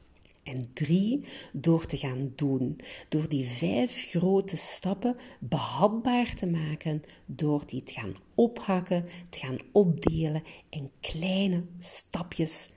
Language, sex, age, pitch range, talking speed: Dutch, female, 50-69, 155-200 Hz, 115 wpm